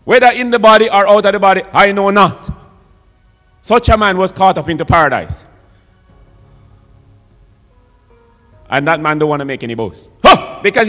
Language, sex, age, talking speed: English, male, 30-49, 165 wpm